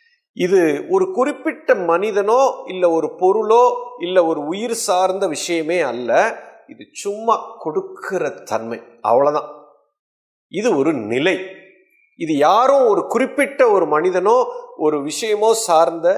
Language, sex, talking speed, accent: Tamil, male, 110 wpm, native